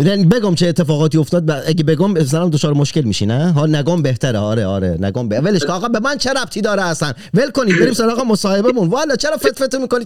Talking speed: 215 wpm